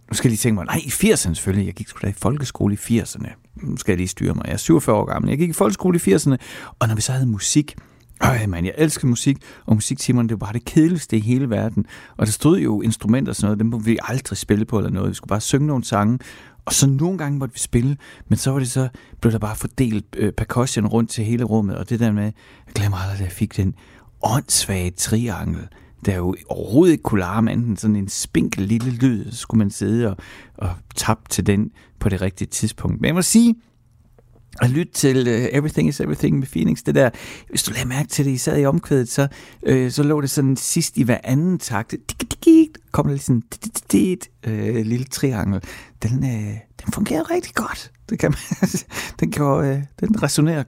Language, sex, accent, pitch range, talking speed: Danish, male, native, 105-135 Hz, 220 wpm